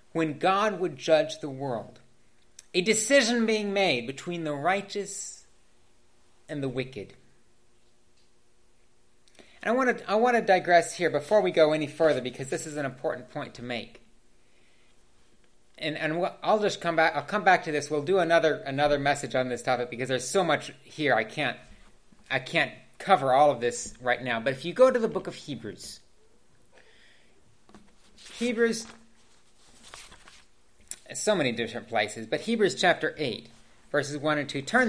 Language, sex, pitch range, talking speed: English, male, 125-185 Hz, 160 wpm